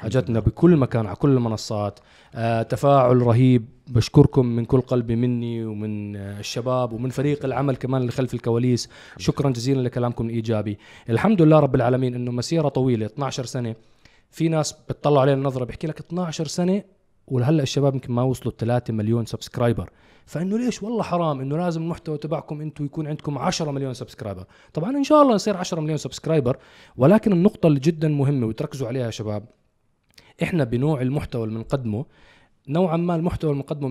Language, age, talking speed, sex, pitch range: Arabic, 20-39, 165 wpm, male, 120-160 Hz